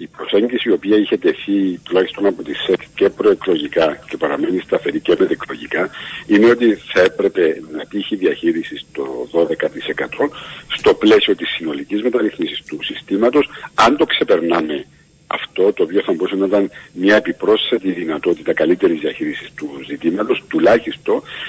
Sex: male